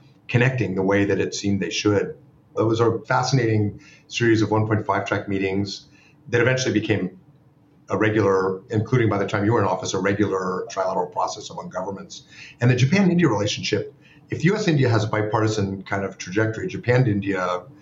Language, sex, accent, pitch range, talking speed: English, male, American, 100-130 Hz, 160 wpm